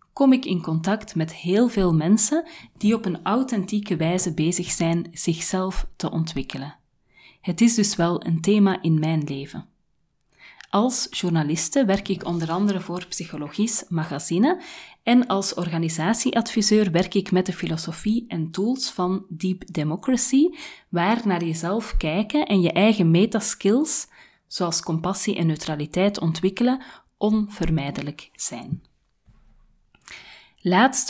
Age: 30-49